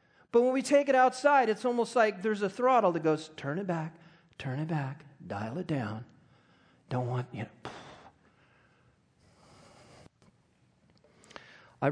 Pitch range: 170-255 Hz